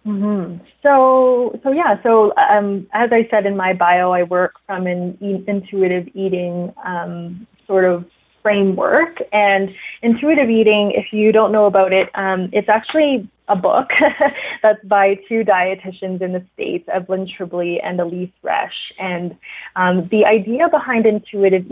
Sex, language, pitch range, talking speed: female, English, 185-220 Hz, 150 wpm